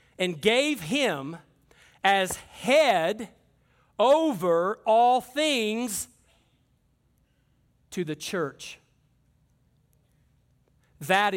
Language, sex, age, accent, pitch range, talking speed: English, male, 40-59, American, 185-250 Hz, 65 wpm